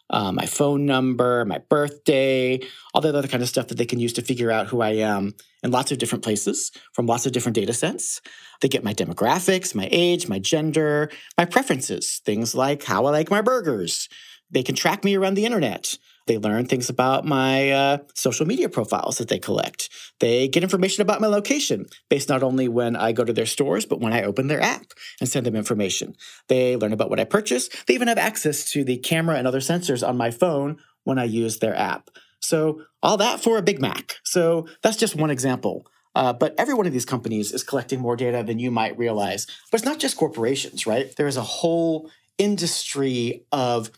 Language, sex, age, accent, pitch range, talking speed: English, male, 40-59, American, 120-160 Hz, 215 wpm